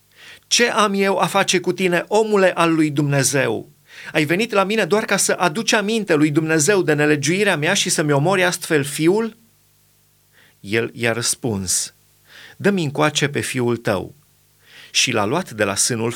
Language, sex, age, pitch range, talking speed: Romanian, male, 30-49, 130-170 Hz, 165 wpm